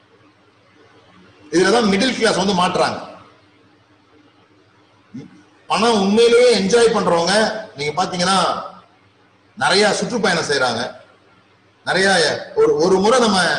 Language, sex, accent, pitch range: Tamil, male, native, 140-225 Hz